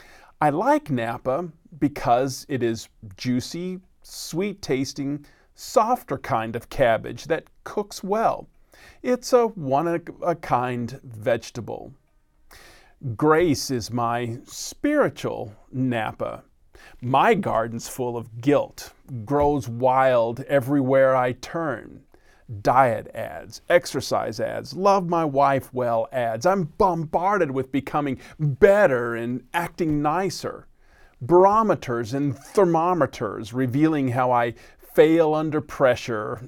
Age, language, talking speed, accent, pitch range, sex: 40-59, English, 100 wpm, American, 120-175 Hz, male